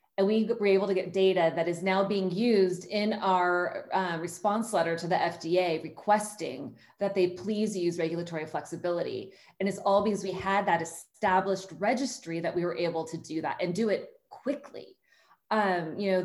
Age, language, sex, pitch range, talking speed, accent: 20-39, English, female, 175-200 Hz, 185 wpm, American